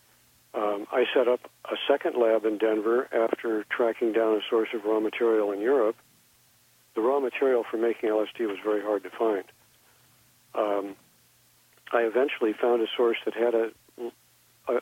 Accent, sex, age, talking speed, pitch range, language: American, male, 50-69, 160 wpm, 105-115 Hz, English